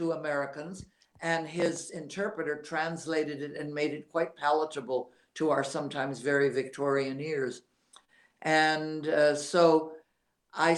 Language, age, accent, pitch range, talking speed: English, 60-79, American, 140-165 Hz, 120 wpm